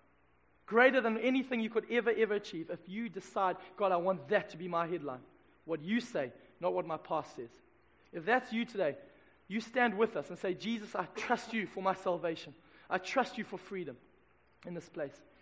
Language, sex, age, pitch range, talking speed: English, male, 20-39, 195-245 Hz, 200 wpm